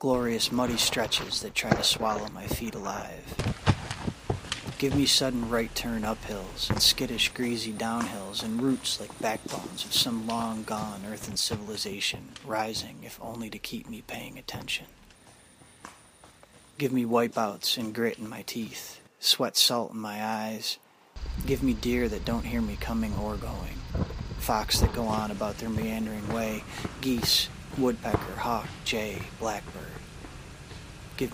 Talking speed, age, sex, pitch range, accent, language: 140 wpm, 30-49, male, 105-120 Hz, American, English